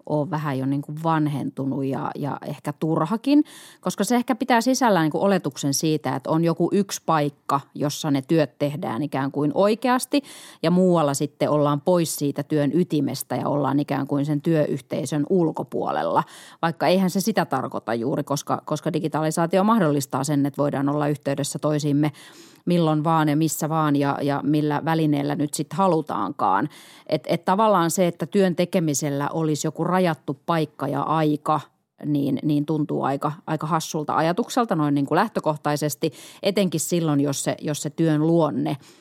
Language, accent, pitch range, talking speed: Finnish, native, 145-170 Hz, 160 wpm